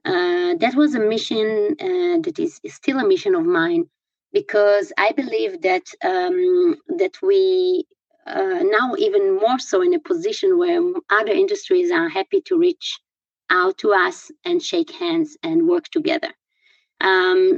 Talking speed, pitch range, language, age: 155 wpm, 335-370 Hz, English, 20-39